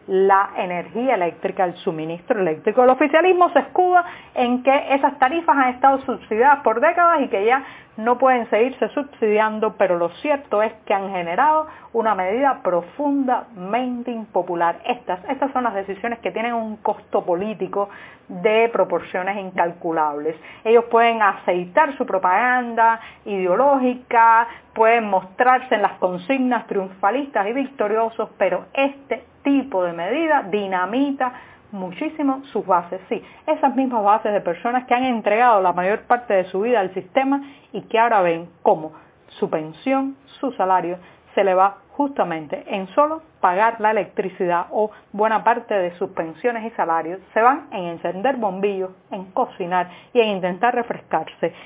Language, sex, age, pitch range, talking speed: Spanish, female, 40-59, 190-250 Hz, 150 wpm